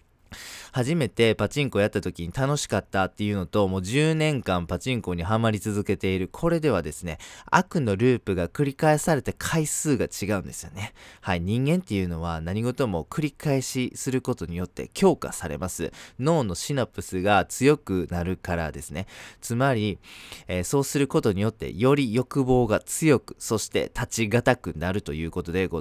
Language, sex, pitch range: Japanese, male, 95-140 Hz